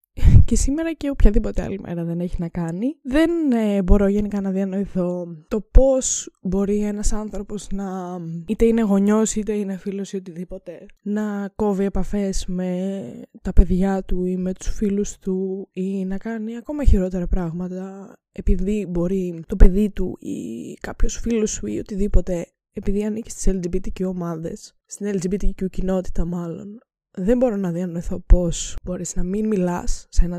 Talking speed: 155 wpm